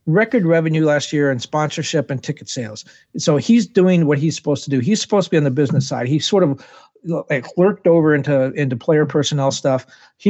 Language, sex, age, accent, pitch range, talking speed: English, male, 50-69, American, 145-185 Hz, 215 wpm